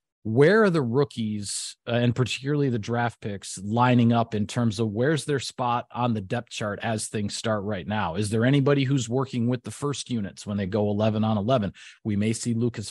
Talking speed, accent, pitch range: 215 wpm, American, 110-135 Hz